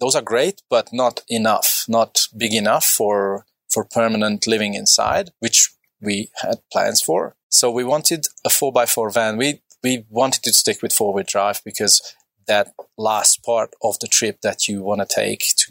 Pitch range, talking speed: 105-125 Hz, 175 wpm